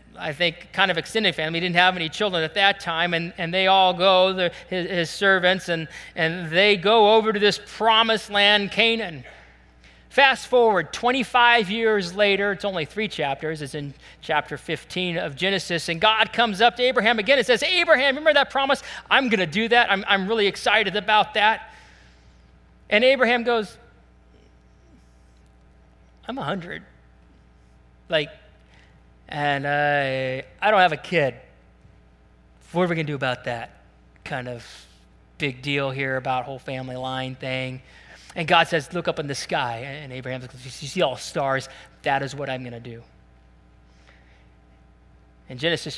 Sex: male